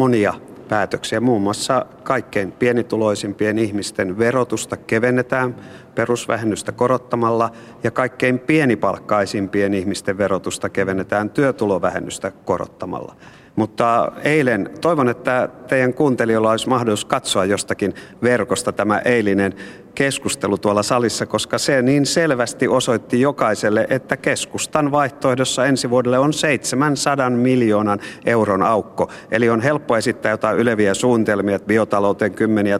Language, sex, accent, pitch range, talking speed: Finnish, male, native, 100-125 Hz, 110 wpm